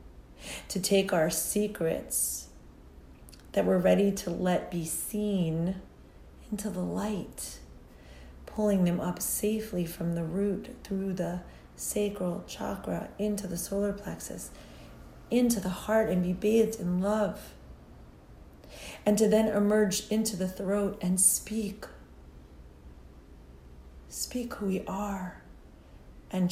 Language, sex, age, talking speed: English, female, 40-59, 115 wpm